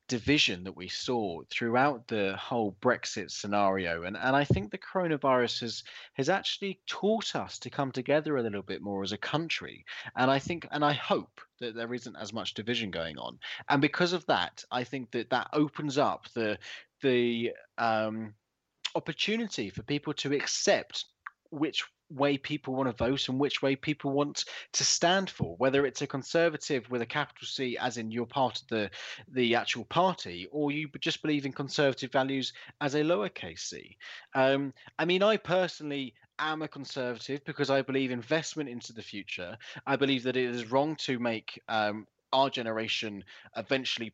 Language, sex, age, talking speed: English, male, 20-39, 180 wpm